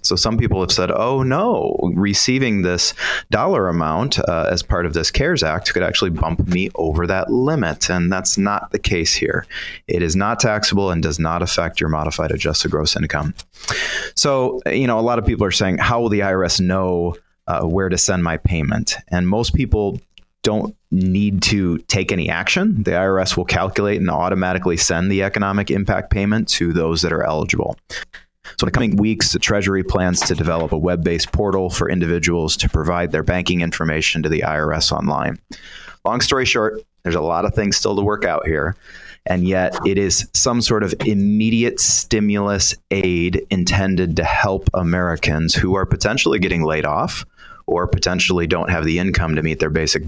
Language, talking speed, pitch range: English, 185 wpm, 85-100 Hz